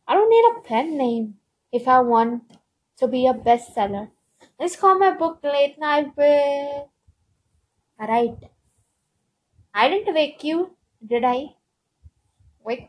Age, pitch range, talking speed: 20-39, 230-305 Hz, 125 wpm